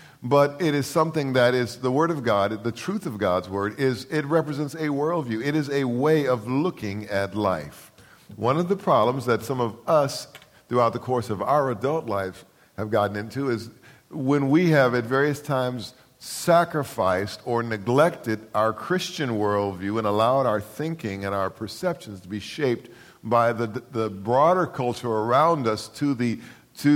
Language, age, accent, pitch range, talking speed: English, 50-69, American, 110-145 Hz, 175 wpm